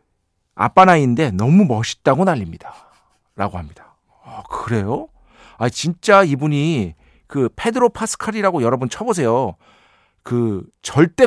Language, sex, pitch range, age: Korean, male, 105-165 Hz, 40-59